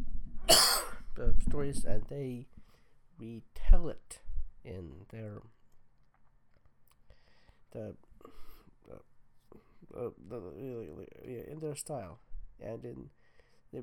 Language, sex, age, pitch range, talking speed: English, male, 50-69, 120-145 Hz, 75 wpm